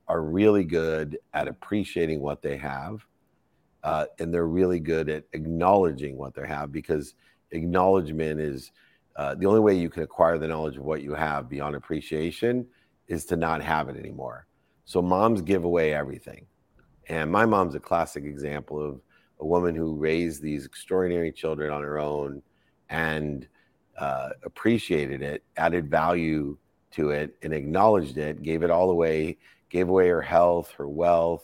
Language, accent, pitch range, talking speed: English, American, 75-90 Hz, 160 wpm